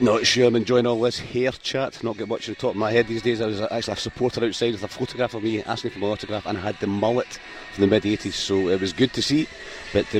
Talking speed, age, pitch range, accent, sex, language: 295 wpm, 30-49, 100-120 Hz, British, male, English